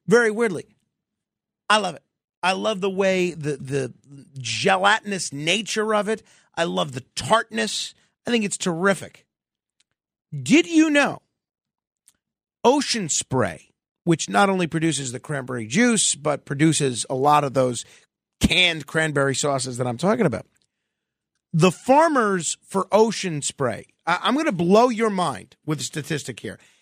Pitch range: 145-230 Hz